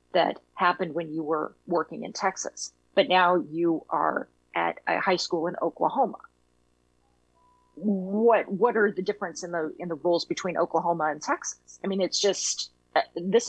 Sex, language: female, English